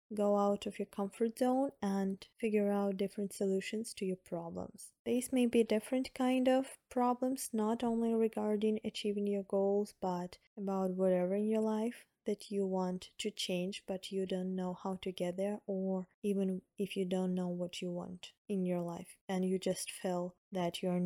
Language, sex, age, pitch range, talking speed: English, female, 20-39, 190-220 Hz, 180 wpm